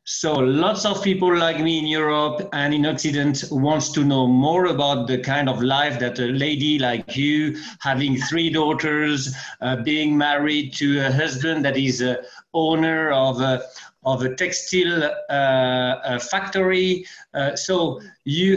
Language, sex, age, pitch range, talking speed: English, male, 50-69, 135-165 Hz, 160 wpm